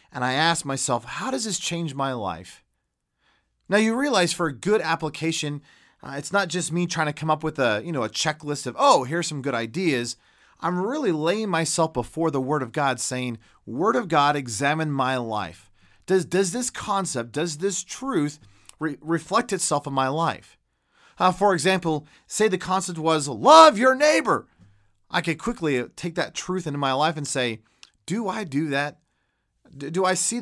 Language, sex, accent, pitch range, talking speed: English, male, American, 135-185 Hz, 185 wpm